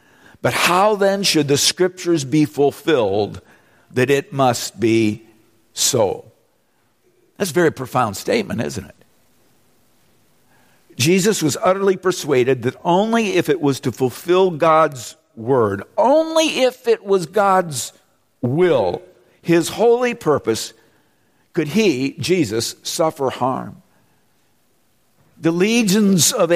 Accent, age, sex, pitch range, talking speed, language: American, 50-69, male, 125-175 Hz, 115 wpm, English